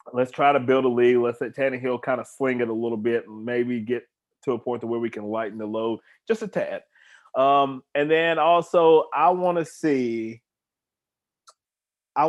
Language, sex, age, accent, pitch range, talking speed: English, male, 30-49, American, 110-125 Hz, 195 wpm